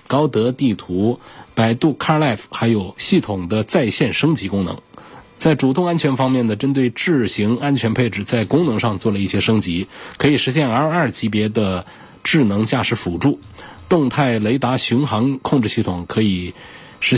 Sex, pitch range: male, 105-140 Hz